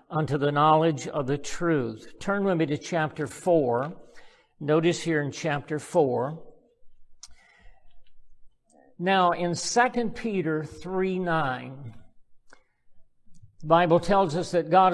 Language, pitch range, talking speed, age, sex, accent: English, 145-180 Hz, 115 wpm, 50-69, male, American